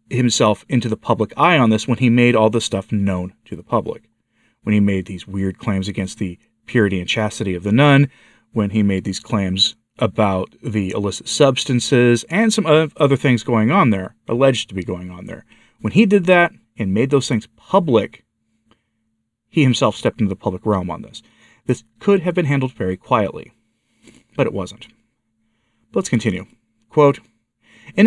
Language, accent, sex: English, American, male